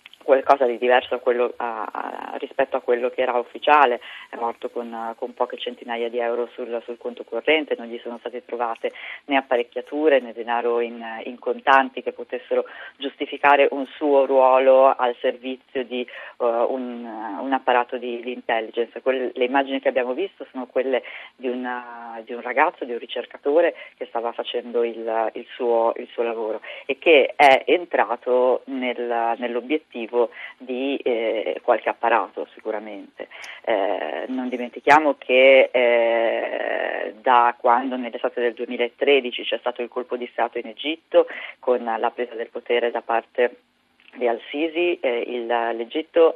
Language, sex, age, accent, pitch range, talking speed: Italian, female, 20-39, native, 115-135 Hz, 140 wpm